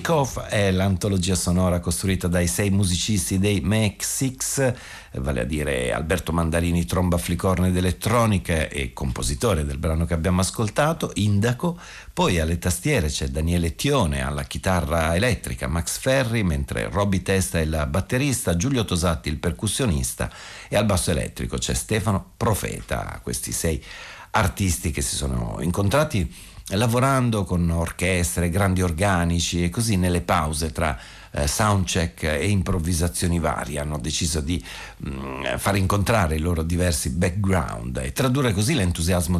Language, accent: Italian, native